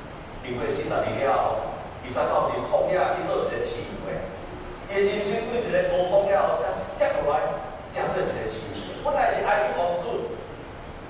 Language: Chinese